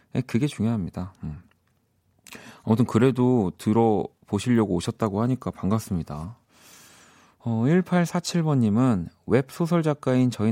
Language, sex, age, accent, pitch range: Korean, male, 40-59, native, 95-130 Hz